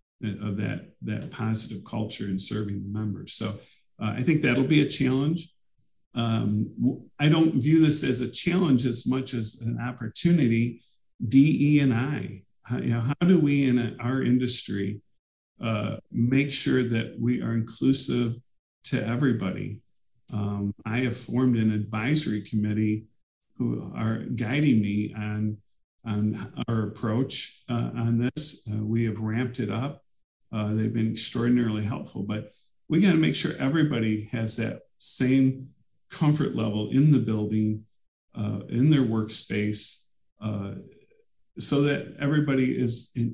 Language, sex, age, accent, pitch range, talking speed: English, male, 50-69, American, 110-135 Hz, 145 wpm